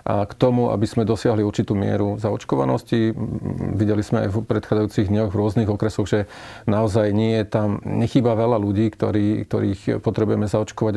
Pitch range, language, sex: 105-115 Hz, Slovak, male